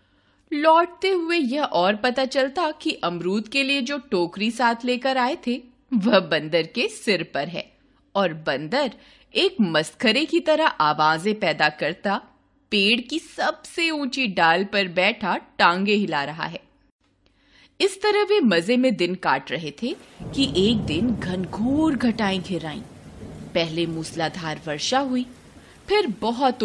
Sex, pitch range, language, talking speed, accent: female, 175-265 Hz, Hindi, 140 wpm, native